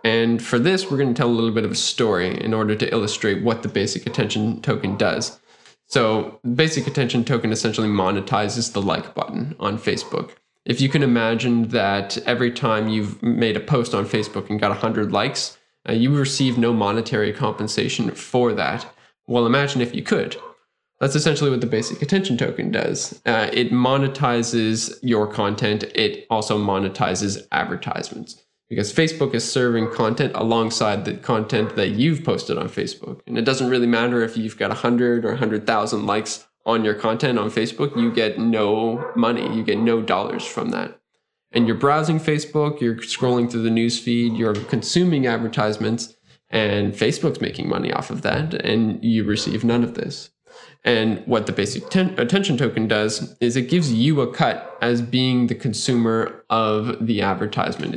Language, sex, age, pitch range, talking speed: English, male, 10-29, 110-125 Hz, 175 wpm